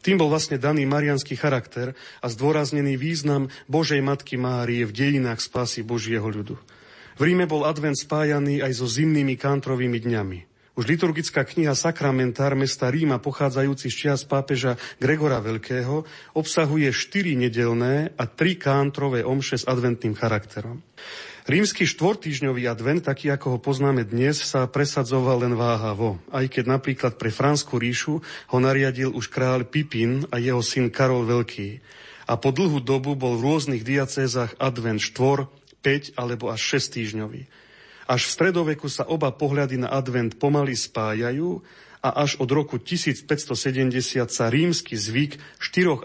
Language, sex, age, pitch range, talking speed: Slovak, male, 40-59, 120-145 Hz, 145 wpm